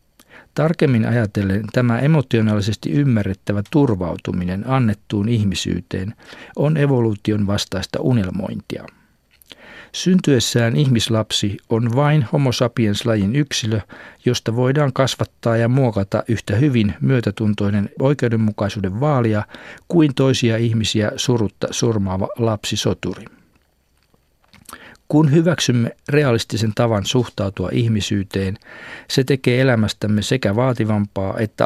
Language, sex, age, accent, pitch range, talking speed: Finnish, male, 50-69, native, 100-125 Hz, 90 wpm